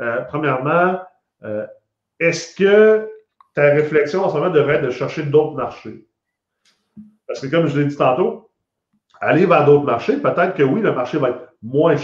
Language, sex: French, male